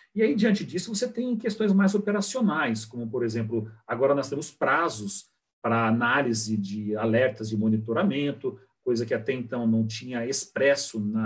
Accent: Brazilian